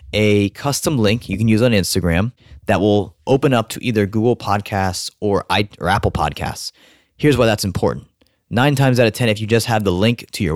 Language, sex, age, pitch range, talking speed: English, male, 20-39, 95-115 Hz, 210 wpm